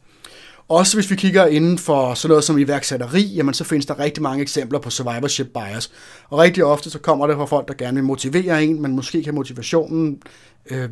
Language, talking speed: Danish, 210 wpm